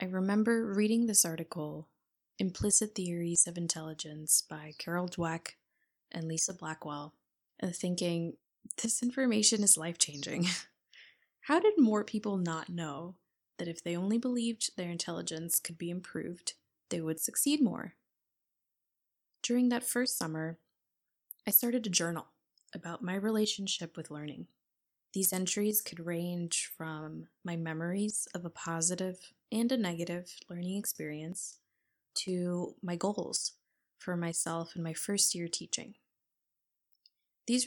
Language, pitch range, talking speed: English, 165-210 Hz, 125 wpm